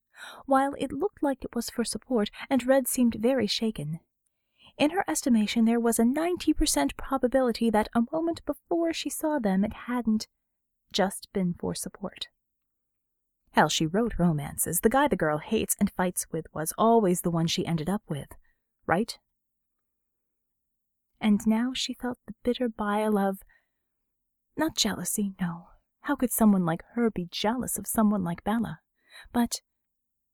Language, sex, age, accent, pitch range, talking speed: English, female, 30-49, American, 190-240 Hz, 155 wpm